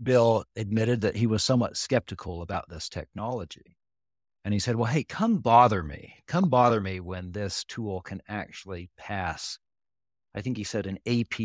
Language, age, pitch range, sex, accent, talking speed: English, 50-69, 95-120 Hz, male, American, 175 wpm